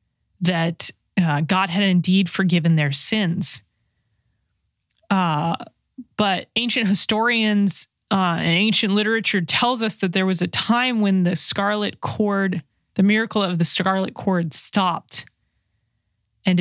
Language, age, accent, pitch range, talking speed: English, 20-39, American, 155-195 Hz, 125 wpm